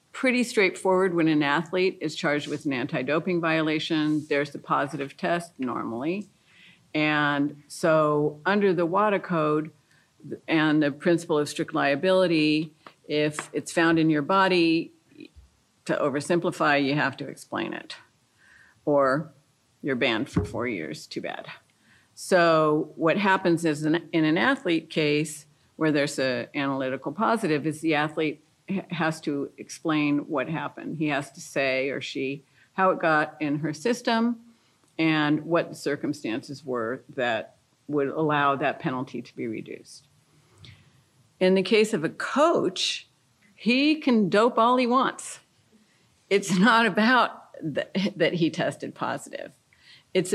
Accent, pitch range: American, 145-180 Hz